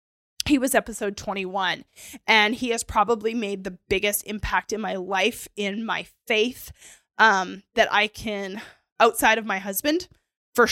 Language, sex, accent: English, female, American